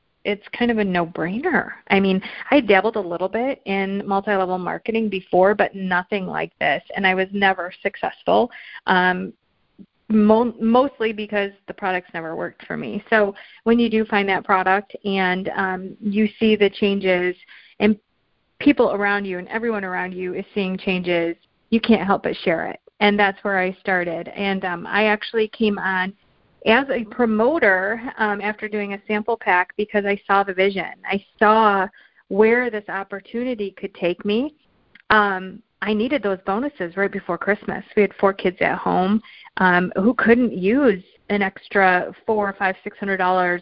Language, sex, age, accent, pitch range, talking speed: English, female, 40-59, American, 190-220 Hz, 165 wpm